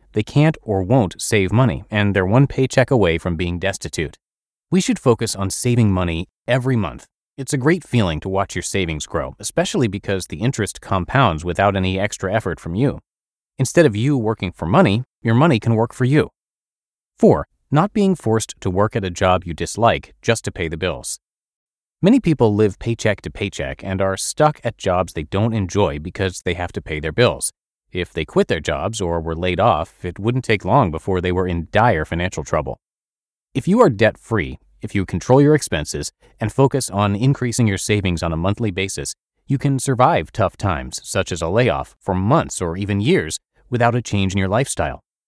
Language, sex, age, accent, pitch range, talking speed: English, male, 30-49, American, 90-125 Hz, 200 wpm